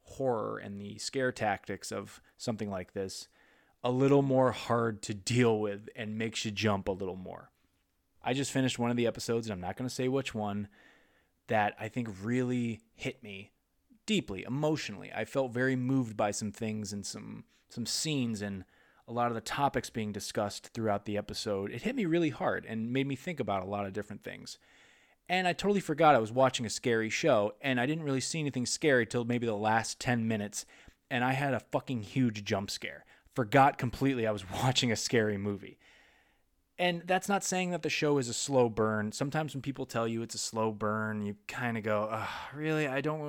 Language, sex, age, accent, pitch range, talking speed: English, male, 20-39, American, 105-130 Hz, 205 wpm